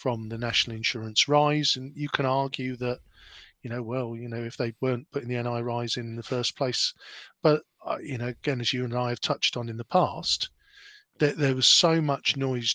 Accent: British